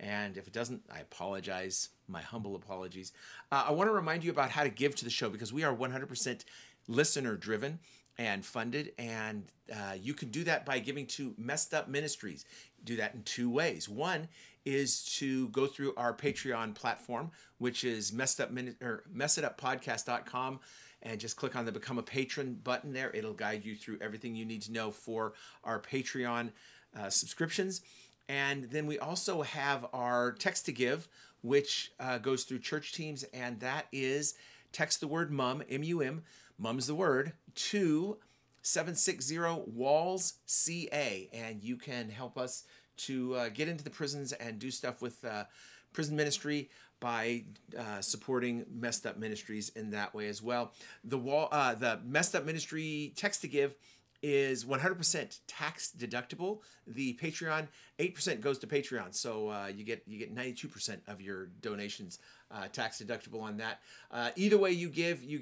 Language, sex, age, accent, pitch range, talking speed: English, male, 50-69, American, 115-150 Hz, 165 wpm